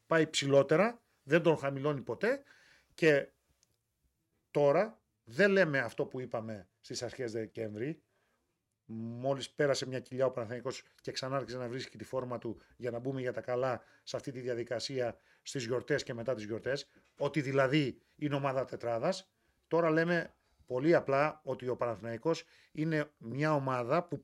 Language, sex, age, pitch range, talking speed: Greek, male, 40-59, 125-175 Hz, 150 wpm